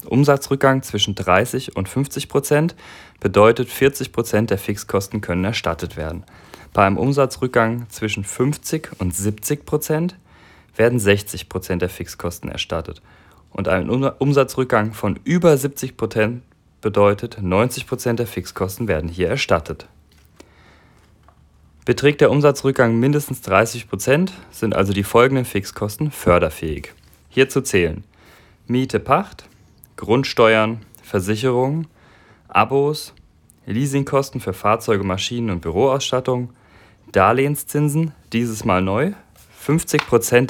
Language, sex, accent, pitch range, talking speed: German, male, German, 100-135 Hz, 105 wpm